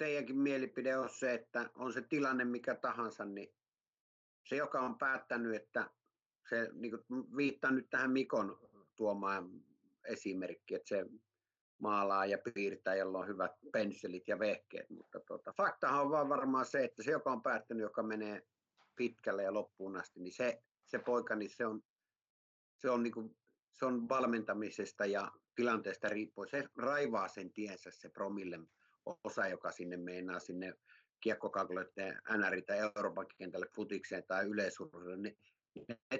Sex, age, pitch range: male, 50-69, 100-135 Hz